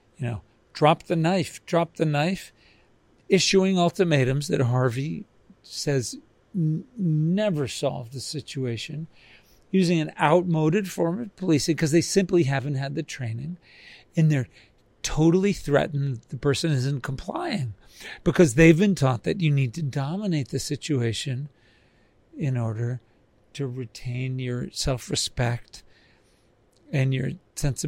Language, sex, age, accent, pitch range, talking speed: English, male, 50-69, American, 125-160 Hz, 130 wpm